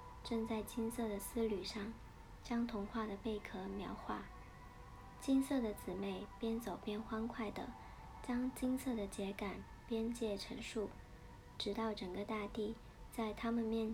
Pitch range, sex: 210-235 Hz, male